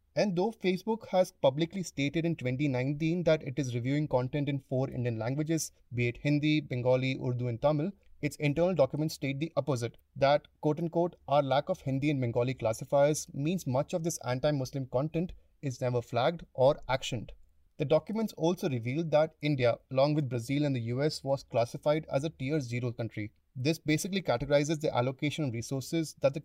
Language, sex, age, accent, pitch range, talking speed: English, male, 30-49, Indian, 130-165 Hz, 175 wpm